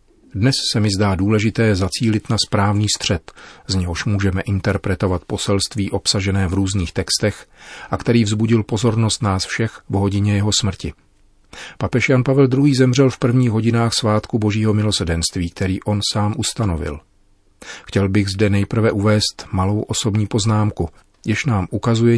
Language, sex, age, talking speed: Czech, male, 40-59, 145 wpm